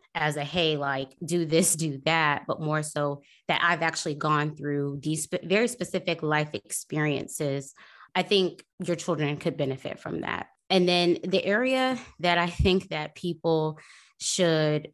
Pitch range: 145-175 Hz